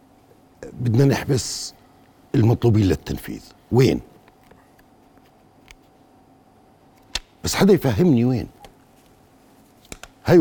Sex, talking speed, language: male, 60 wpm, Arabic